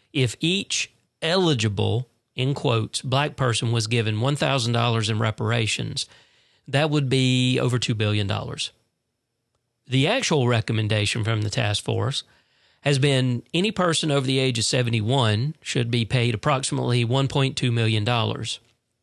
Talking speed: 145 wpm